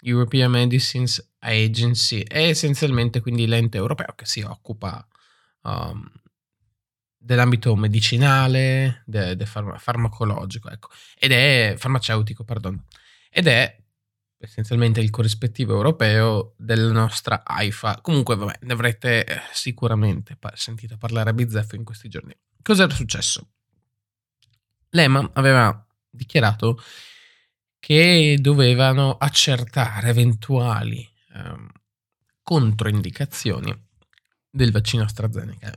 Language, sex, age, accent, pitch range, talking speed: Italian, male, 20-39, native, 110-125 Hz, 95 wpm